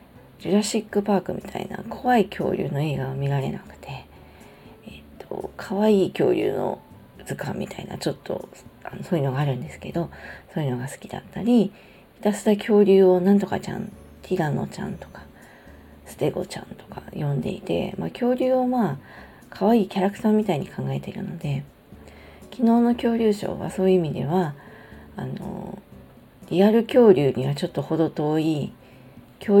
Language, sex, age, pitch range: Japanese, female, 40-59, 150-195 Hz